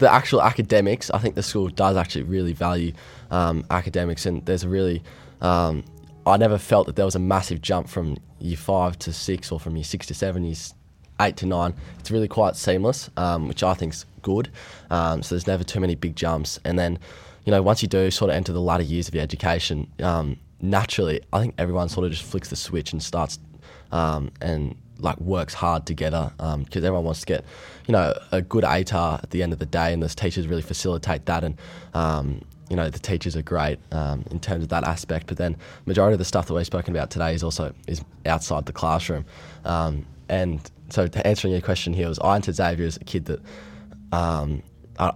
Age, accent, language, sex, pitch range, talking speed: 20-39, Australian, English, male, 80-90 Hz, 220 wpm